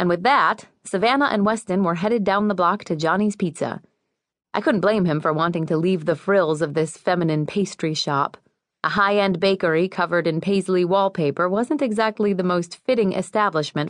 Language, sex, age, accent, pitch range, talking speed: English, female, 30-49, American, 160-205 Hz, 180 wpm